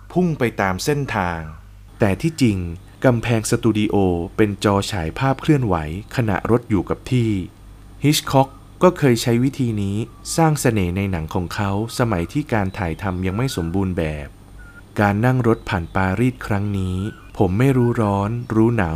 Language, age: Thai, 20-39